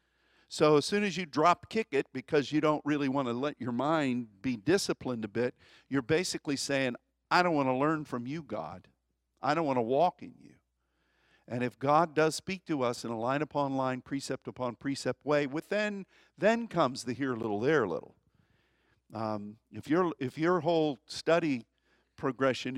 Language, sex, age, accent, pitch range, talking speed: English, male, 50-69, American, 115-150 Hz, 185 wpm